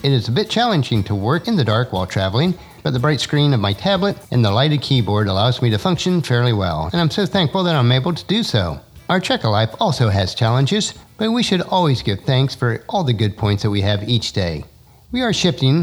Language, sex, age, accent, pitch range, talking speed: English, male, 50-69, American, 110-180 Hz, 245 wpm